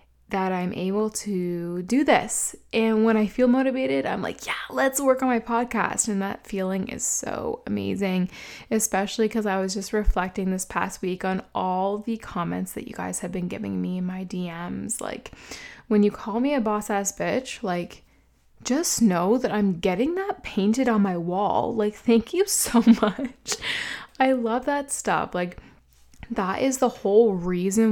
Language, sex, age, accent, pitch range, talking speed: English, female, 20-39, American, 185-230 Hz, 180 wpm